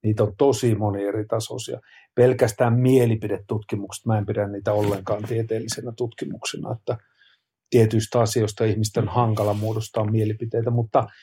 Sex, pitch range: male, 105-125 Hz